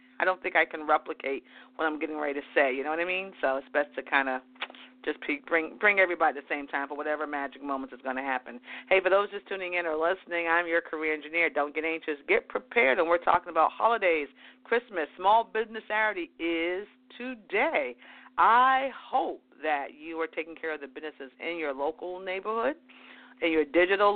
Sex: female